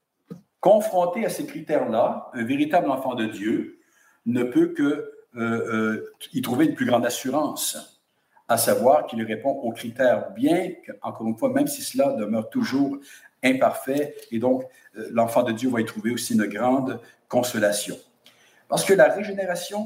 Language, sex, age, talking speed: English, male, 60-79, 160 wpm